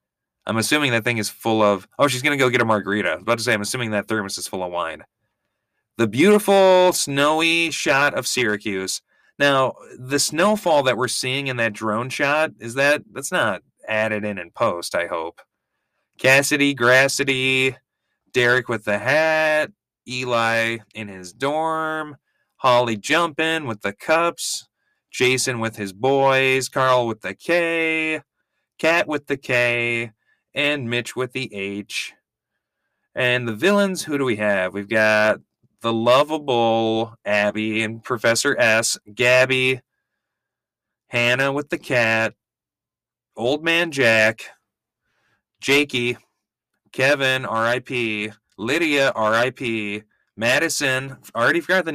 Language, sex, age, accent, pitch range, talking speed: English, male, 30-49, American, 110-145 Hz, 135 wpm